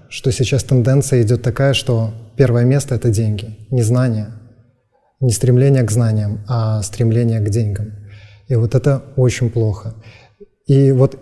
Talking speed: 145 wpm